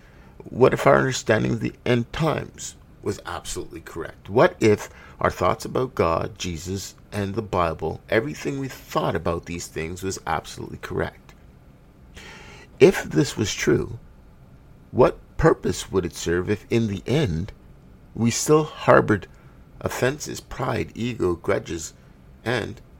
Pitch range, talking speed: 85-110 Hz, 135 wpm